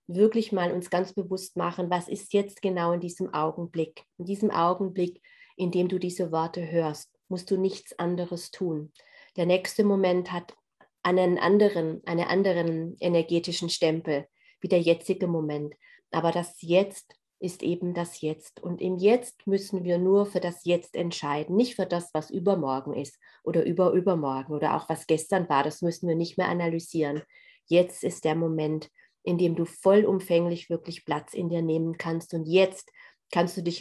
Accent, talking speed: German, 170 wpm